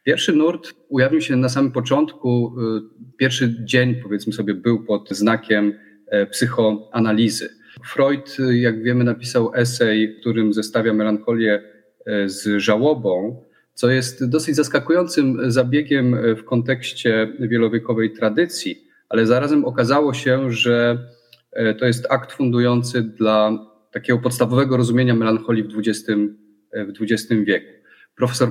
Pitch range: 110-130 Hz